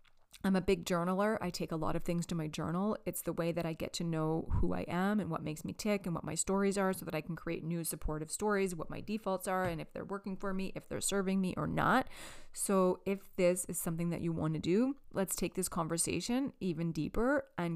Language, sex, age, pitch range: English, female, 30-49, 165-200 Hz